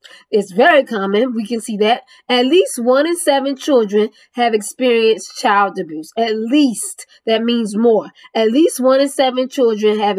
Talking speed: 170 wpm